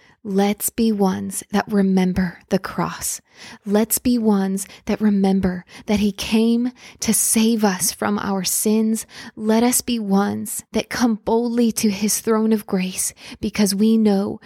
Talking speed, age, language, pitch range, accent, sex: 150 wpm, 20-39, English, 200-230 Hz, American, female